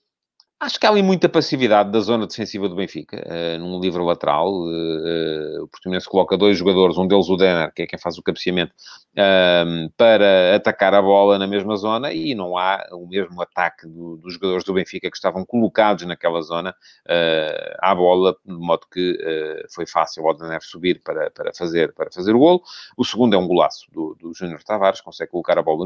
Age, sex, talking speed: 30-49, male, 205 wpm